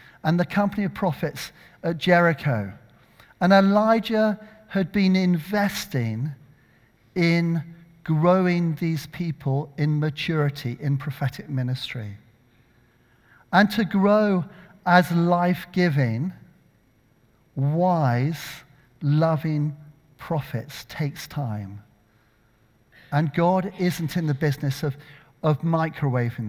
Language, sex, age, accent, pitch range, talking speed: English, male, 50-69, British, 135-180 Hz, 90 wpm